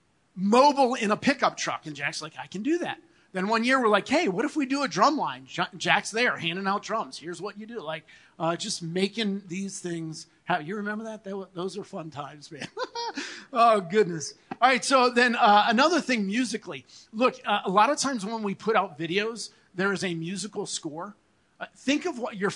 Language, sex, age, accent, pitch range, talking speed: English, male, 40-59, American, 175-225 Hz, 210 wpm